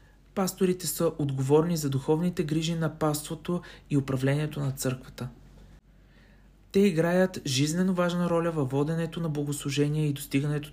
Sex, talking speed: male, 130 wpm